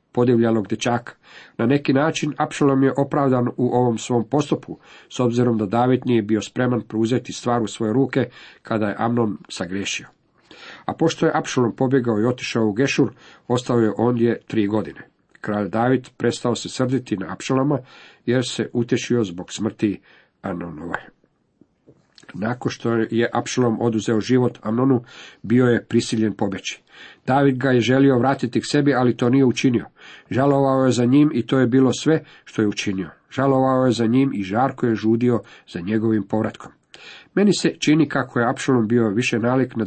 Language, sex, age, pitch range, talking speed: Croatian, male, 50-69, 115-130 Hz, 165 wpm